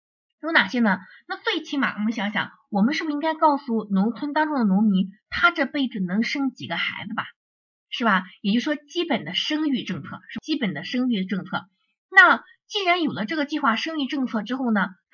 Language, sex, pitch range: Chinese, female, 200-275 Hz